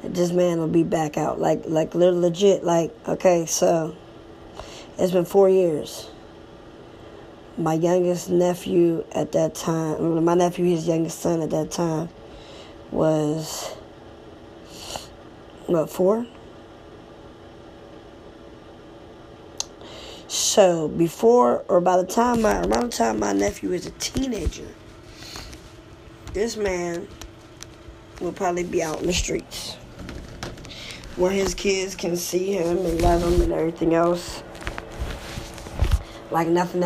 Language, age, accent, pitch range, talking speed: English, 20-39, American, 110-185 Hz, 115 wpm